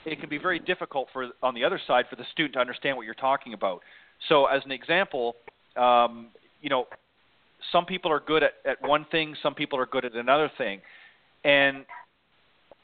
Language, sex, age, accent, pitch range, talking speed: English, male, 40-59, American, 125-150 Hz, 195 wpm